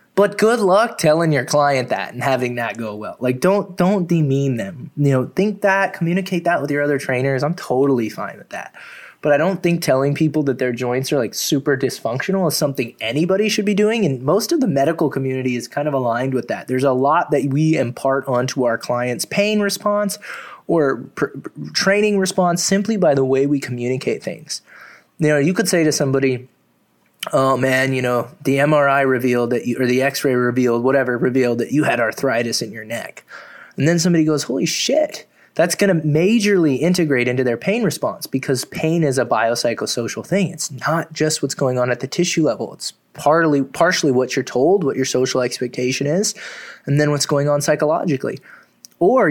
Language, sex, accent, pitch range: English, male, American, 130-180 Hz